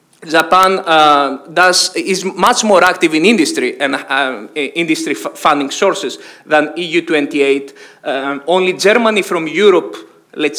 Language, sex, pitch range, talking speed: English, male, 150-190 Hz, 125 wpm